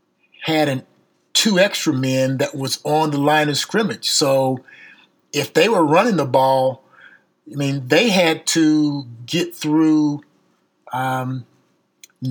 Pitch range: 135-160 Hz